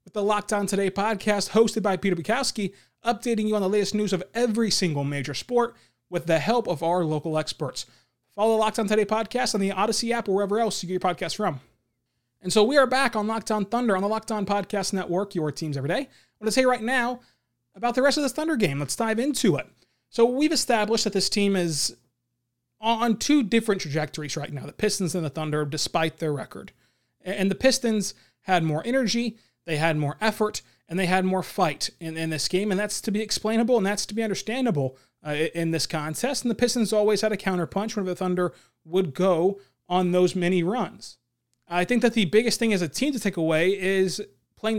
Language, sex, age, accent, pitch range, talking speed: English, male, 30-49, American, 170-225 Hz, 220 wpm